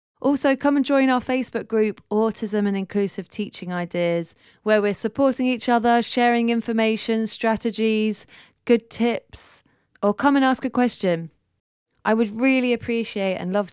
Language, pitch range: English, 190-225 Hz